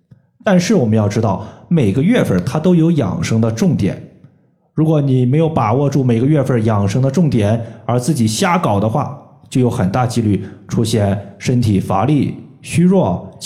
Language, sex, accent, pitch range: Chinese, male, native, 110-145 Hz